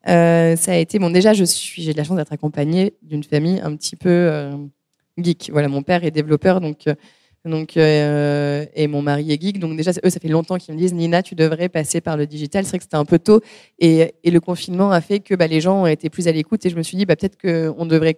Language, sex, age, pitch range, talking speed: French, female, 20-39, 160-195 Hz, 265 wpm